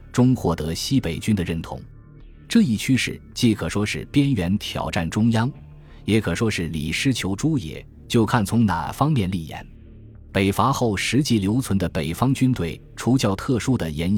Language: Chinese